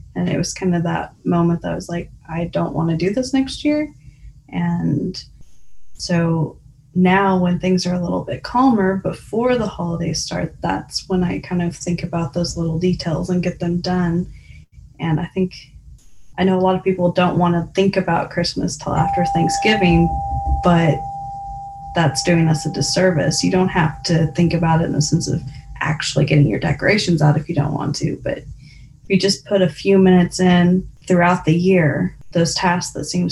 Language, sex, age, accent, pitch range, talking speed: English, female, 20-39, American, 155-185 Hz, 195 wpm